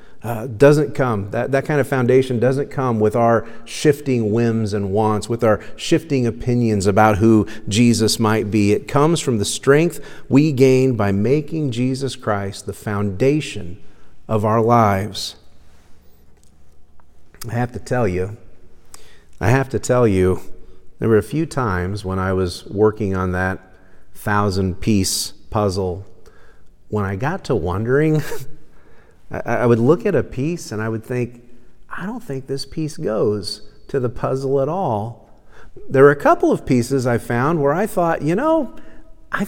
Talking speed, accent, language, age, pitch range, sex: 160 wpm, American, English, 40-59, 105-145 Hz, male